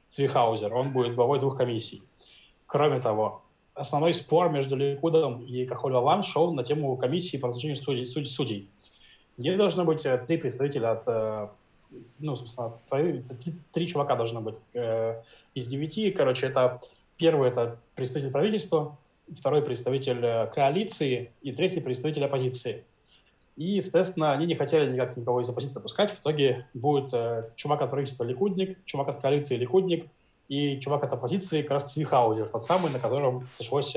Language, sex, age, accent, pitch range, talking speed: Russian, male, 20-39, native, 125-155 Hz, 145 wpm